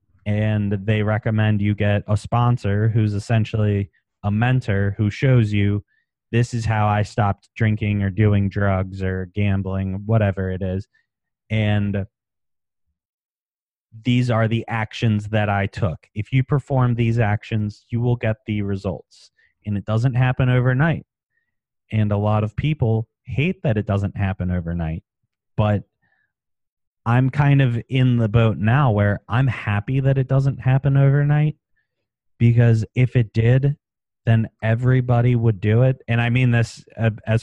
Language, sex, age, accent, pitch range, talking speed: English, male, 30-49, American, 100-120 Hz, 150 wpm